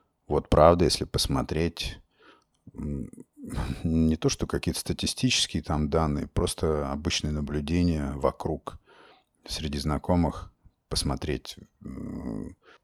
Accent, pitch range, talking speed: native, 75-90 Hz, 85 wpm